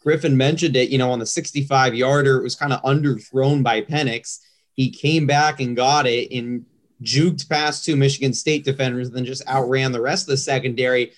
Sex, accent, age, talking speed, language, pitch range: male, American, 30-49, 200 wpm, English, 125-145 Hz